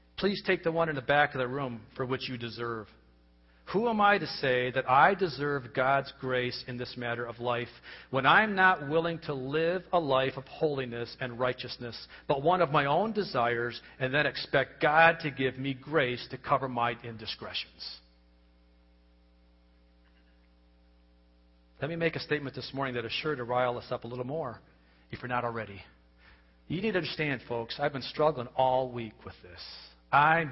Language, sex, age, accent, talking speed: English, male, 40-59, American, 185 wpm